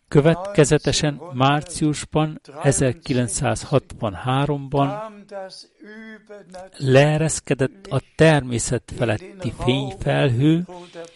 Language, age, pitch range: Hungarian, 60-79, 130-175 Hz